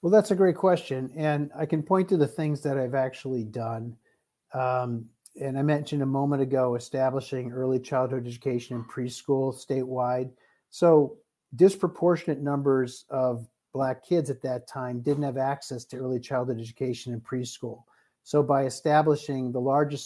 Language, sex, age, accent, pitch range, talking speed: English, male, 50-69, American, 125-150 Hz, 160 wpm